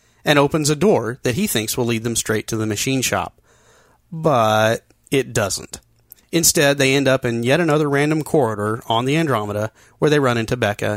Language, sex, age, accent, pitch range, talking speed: English, male, 30-49, American, 110-145 Hz, 190 wpm